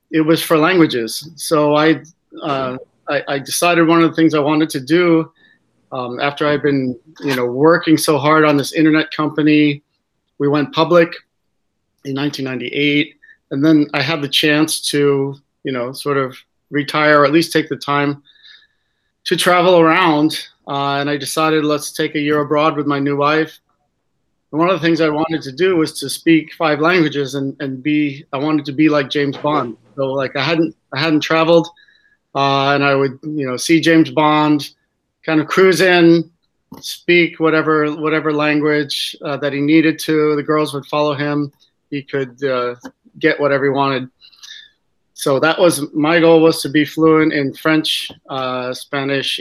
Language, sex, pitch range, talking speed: English, male, 140-160 Hz, 180 wpm